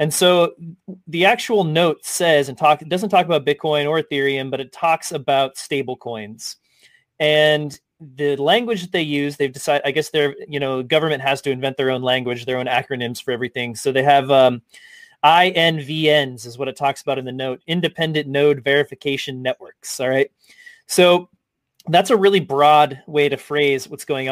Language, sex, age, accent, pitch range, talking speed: English, male, 30-49, American, 140-175 Hz, 185 wpm